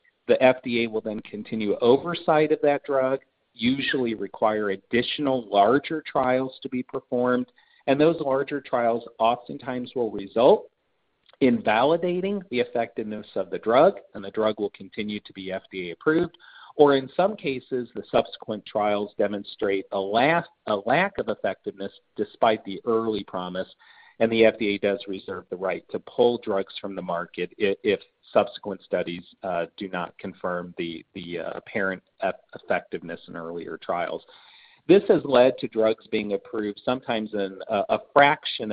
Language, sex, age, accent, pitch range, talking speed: English, male, 40-59, American, 100-135 Hz, 145 wpm